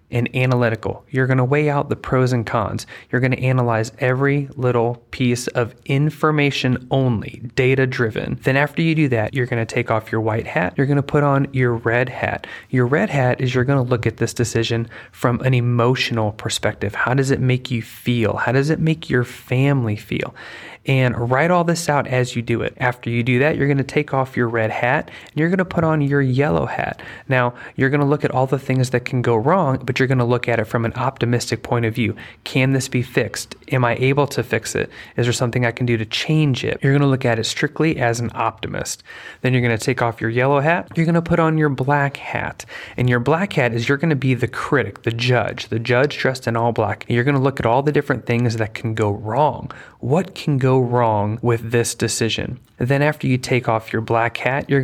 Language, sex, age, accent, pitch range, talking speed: English, male, 30-49, American, 115-140 Hz, 245 wpm